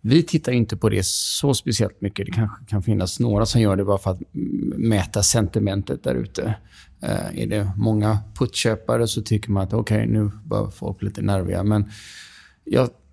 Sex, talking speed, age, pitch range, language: male, 185 wpm, 30-49, 100-120 Hz, Swedish